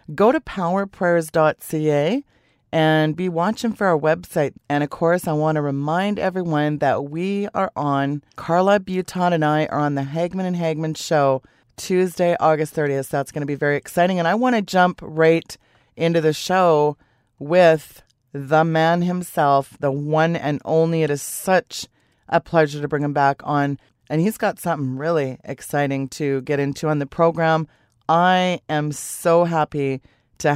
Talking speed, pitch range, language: 165 wpm, 145-175 Hz, English